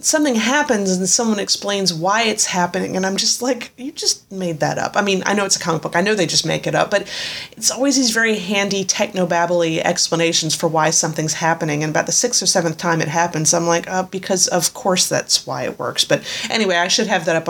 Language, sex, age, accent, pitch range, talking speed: English, female, 30-49, American, 170-230 Hz, 245 wpm